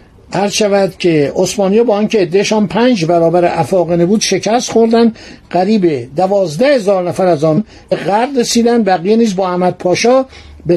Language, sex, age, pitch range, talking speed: Persian, male, 60-79, 170-220 Hz, 145 wpm